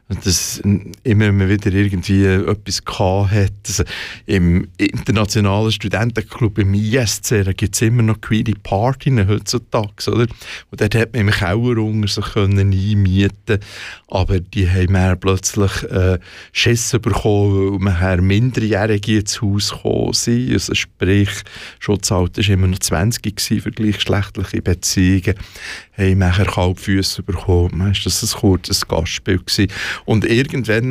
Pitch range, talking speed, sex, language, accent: 95-110 Hz, 130 wpm, male, German, Austrian